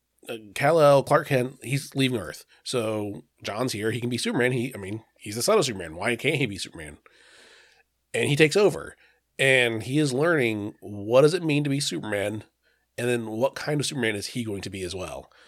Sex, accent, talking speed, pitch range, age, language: male, American, 215 wpm, 110-135 Hz, 30-49, English